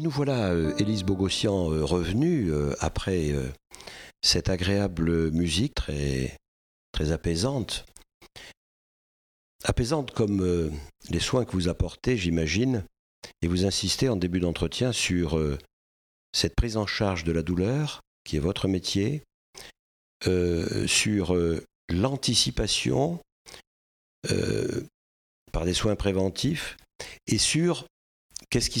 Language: French